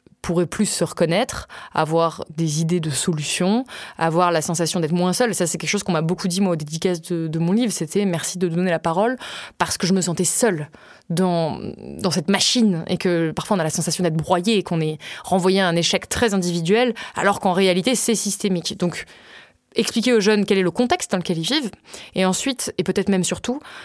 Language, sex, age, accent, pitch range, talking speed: French, female, 20-39, French, 165-200 Hz, 220 wpm